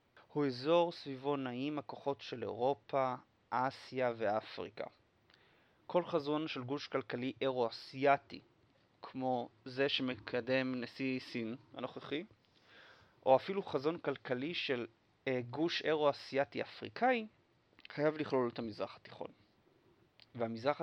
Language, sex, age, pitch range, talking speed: Hebrew, male, 30-49, 120-145 Hz, 105 wpm